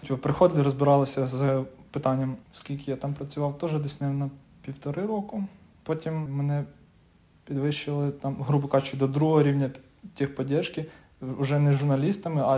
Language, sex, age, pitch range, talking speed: Ukrainian, male, 20-39, 135-150 Hz, 135 wpm